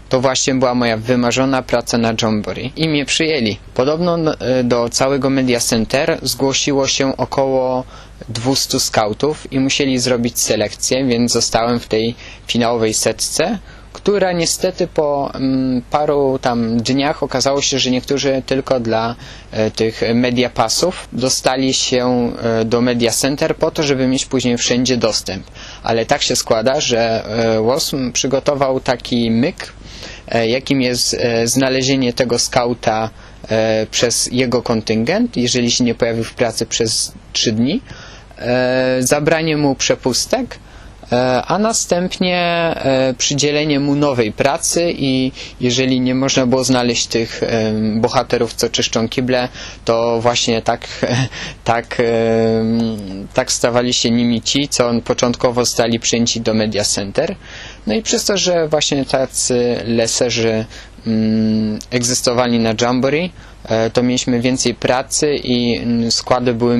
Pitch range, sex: 115-135 Hz, male